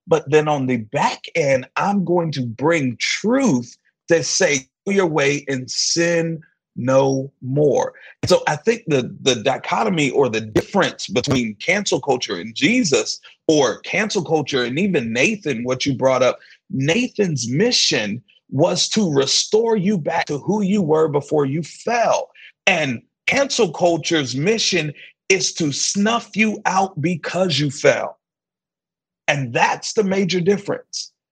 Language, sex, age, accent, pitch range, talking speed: English, male, 40-59, American, 145-215 Hz, 145 wpm